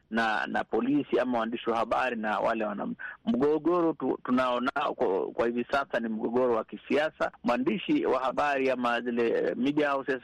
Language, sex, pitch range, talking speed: Swahili, male, 120-145 Hz, 165 wpm